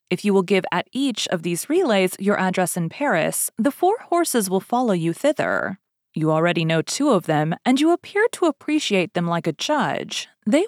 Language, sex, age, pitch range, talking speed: English, female, 30-49, 165-255 Hz, 200 wpm